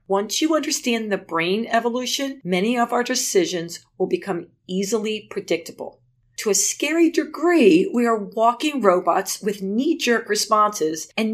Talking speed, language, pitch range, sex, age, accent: 140 wpm, English, 180-245 Hz, female, 40-59, American